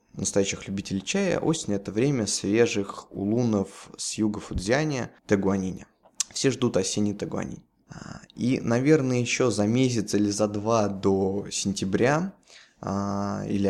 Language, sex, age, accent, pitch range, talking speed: Russian, male, 20-39, native, 100-125 Hz, 120 wpm